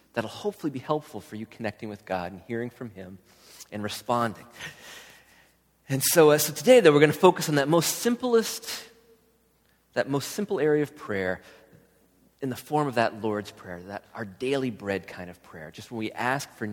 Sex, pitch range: male, 100-135 Hz